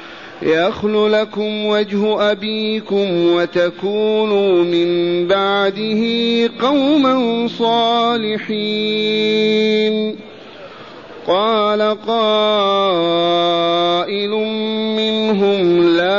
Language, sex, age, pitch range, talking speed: Arabic, male, 40-59, 190-220 Hz, 50 wpm